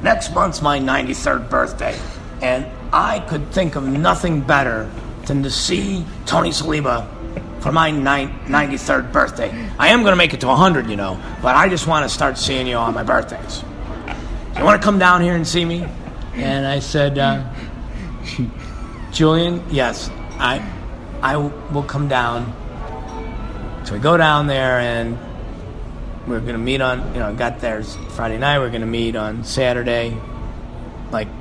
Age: 50-69